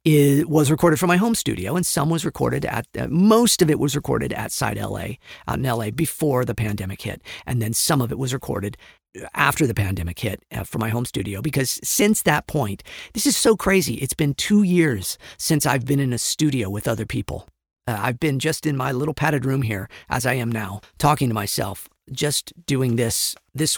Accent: American